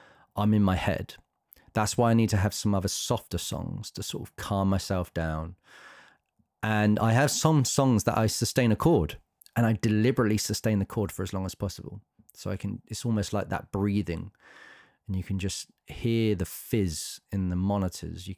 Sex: male